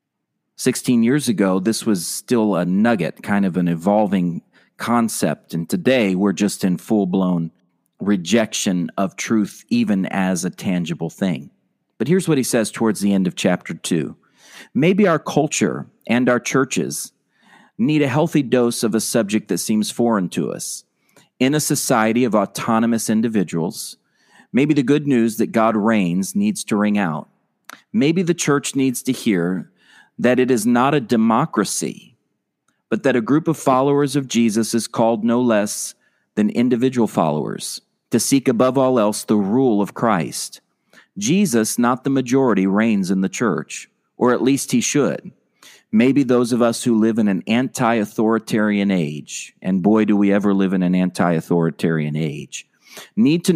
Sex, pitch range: male, 100-130 Hz